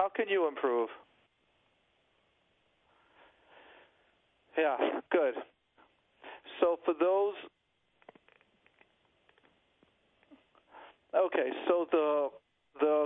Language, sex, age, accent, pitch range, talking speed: English, male, 40-59, American, 160-230 Hz, 60 wpm